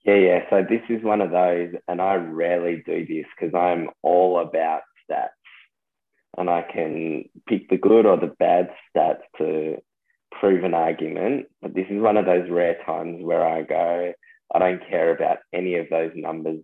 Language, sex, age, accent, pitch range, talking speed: English, male, 20-39, Australian, 80-95 Hz, 185 wpm